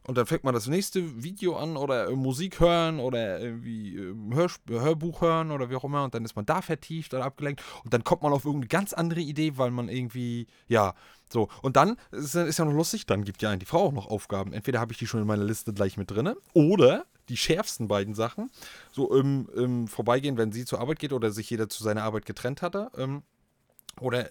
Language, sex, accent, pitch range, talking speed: German, male, German, 115-155 Hz, 230 wpm